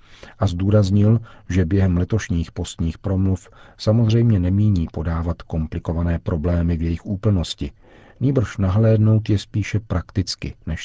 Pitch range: 90-110 Hz